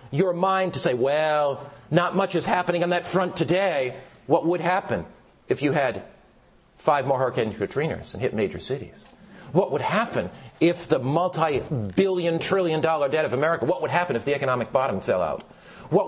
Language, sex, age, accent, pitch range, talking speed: English, male, 50-69, American, 130-180 Hz, 180 wpm